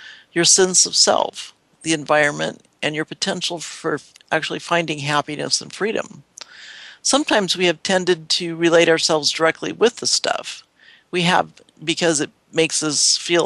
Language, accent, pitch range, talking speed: English, American, 150-175 Hz, 145 wpm